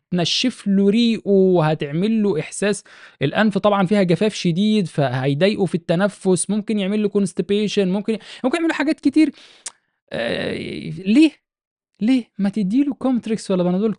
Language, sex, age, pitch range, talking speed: Arabic, male, 20-39, 130-195 Hz, 145 wpm